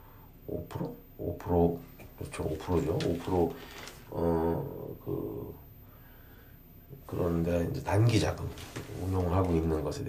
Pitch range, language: 85-105 Hz, Korean